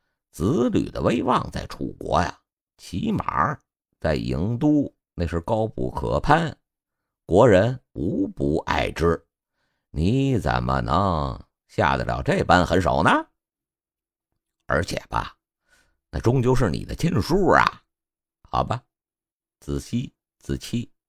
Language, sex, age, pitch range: Chinese, male, 50-69, 70-95 Hz